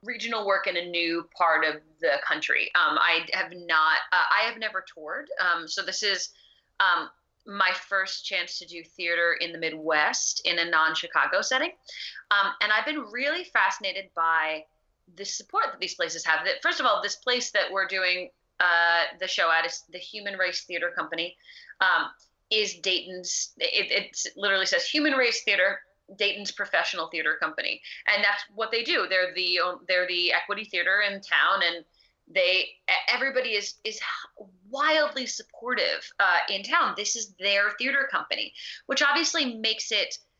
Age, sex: 30-49, female